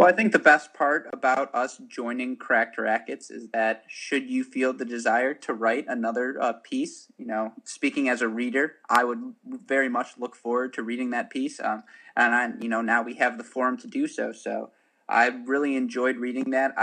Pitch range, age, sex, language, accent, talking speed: 115-135 Hz, 20-39, male, English, American, 205 wpm